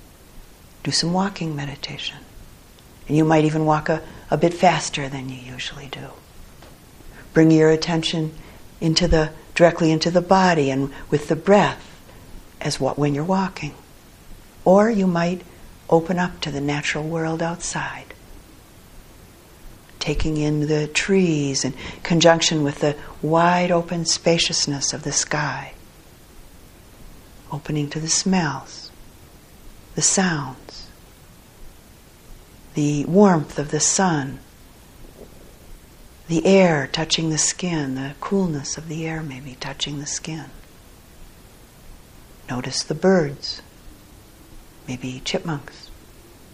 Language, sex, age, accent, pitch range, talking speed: English, female, 60-79, American, 130-165 Hz, 115 wpm